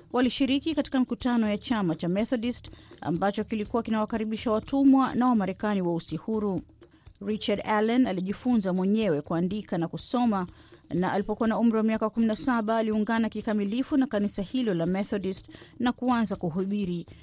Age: 30-49